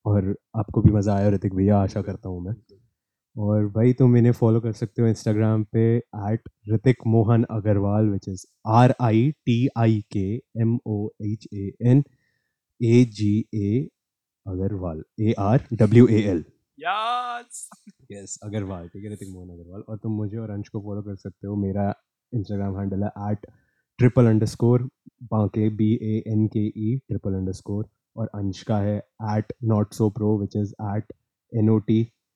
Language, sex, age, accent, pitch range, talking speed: Hindi, male, 20-39, native, 105-115 Hz, 165 wpm